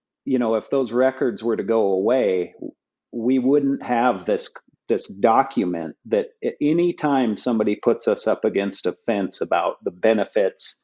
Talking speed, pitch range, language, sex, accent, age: 150 wpm, 100-130 Hz, English, male, American, 50-69